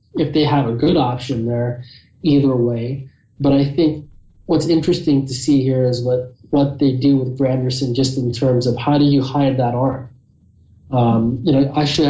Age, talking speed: 30-49, 195 wpm